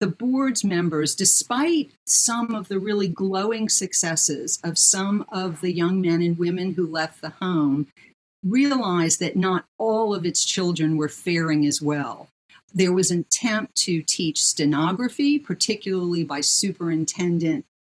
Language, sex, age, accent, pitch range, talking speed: English, female, 50-69, American, 160-195 Hz, 145 wpm